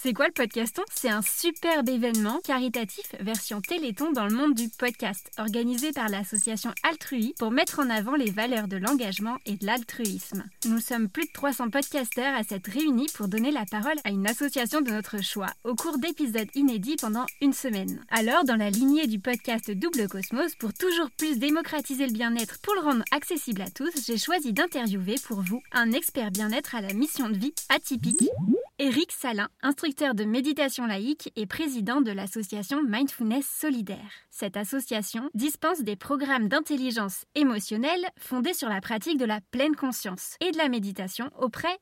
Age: 20-39